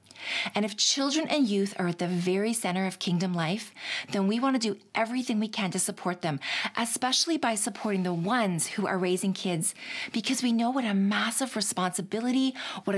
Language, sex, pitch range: English, female, 180-230 Hz